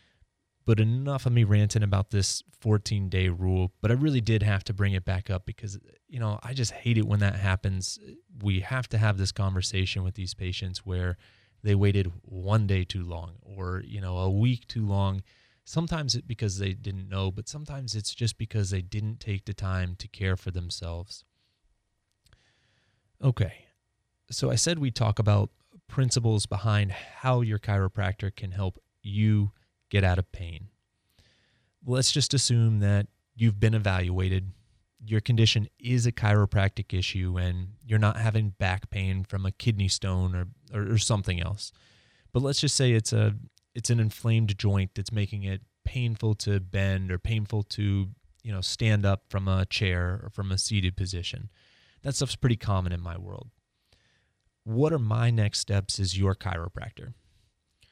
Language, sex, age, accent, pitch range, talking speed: English, male, 30-49, American, 95-115 Hz, 170 wpm